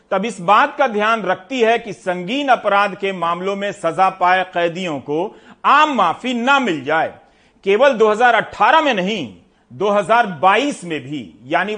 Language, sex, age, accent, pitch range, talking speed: Hindi, male, 40-59, native, 175-235 Hz, 155 wpm